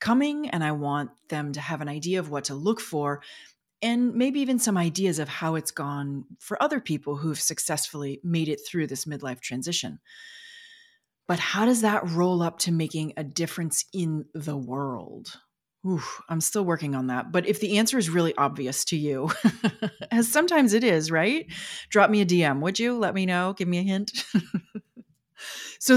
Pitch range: 145-200 Hz